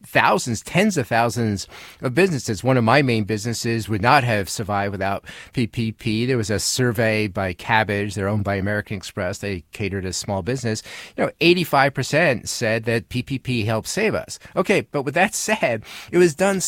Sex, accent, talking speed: male, American, 185 wpm